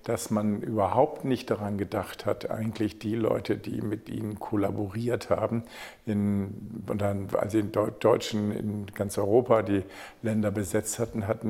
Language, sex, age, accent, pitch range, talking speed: German, male, 50-69, German, 105-115 Hz, 150 wpm